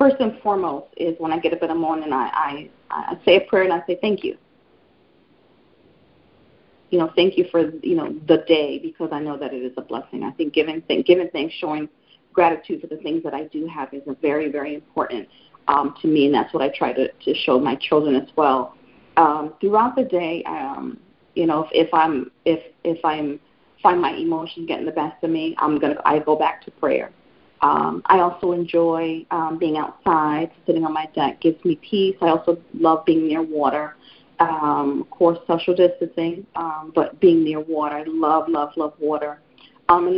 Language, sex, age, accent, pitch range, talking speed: English, female, 30-49, American, 155-180 Hz, 210 wpm